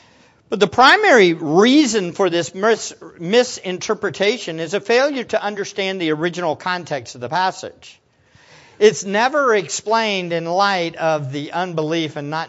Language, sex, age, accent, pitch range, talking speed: English, male, 50-69, American, 155-220 Hz, 135 wpm